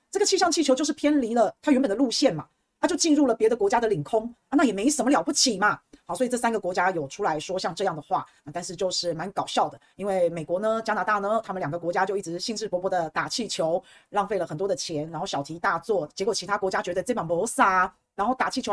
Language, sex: Chinese, female